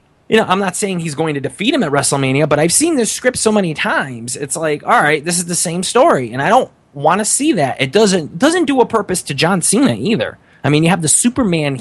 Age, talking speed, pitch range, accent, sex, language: 20-39, 265 wpm, 120-180 Hz, American, male, English